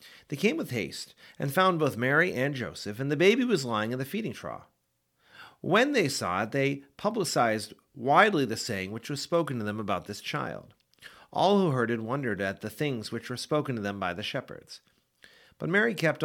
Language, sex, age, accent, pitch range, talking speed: English, male, 40-59, American, 105-140 Hz, 205 wpm